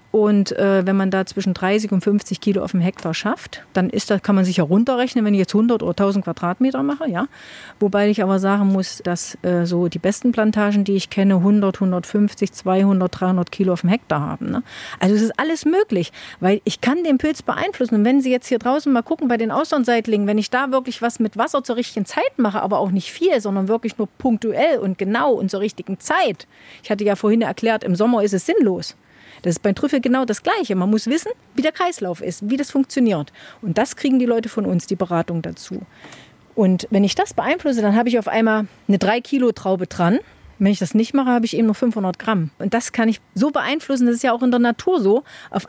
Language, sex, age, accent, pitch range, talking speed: German, female, 40-59, German, 195-245 Hz, 235 wpm